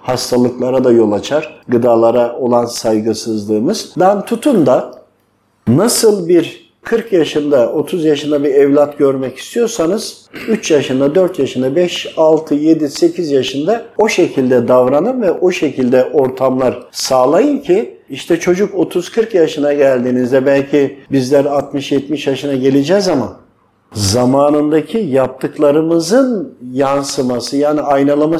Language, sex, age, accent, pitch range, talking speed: Turkish, male, 50-69, native, 130-175 Hz, 115 wpm